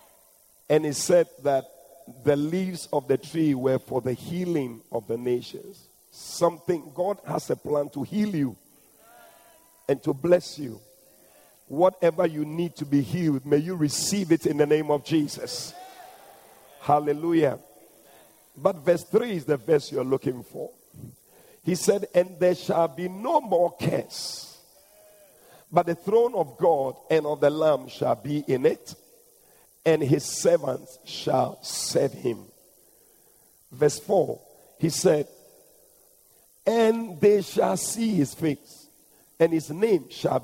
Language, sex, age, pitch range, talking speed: English, male, 50-69, 145-190 Hz, 140 wpm